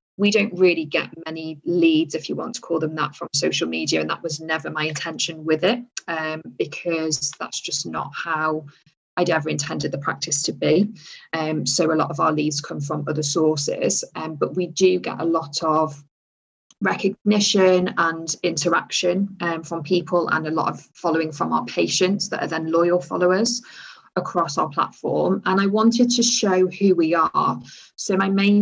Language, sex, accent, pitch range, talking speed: English, female, British, 160-190 Hz, 185 wpm